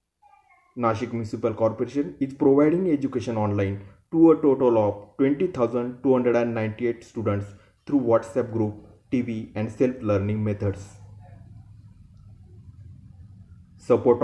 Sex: male